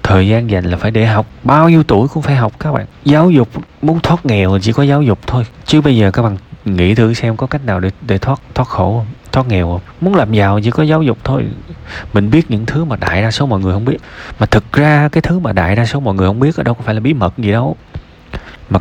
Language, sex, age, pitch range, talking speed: Vietnamese, male, 20-39, 80-120 Hz, 285 wpm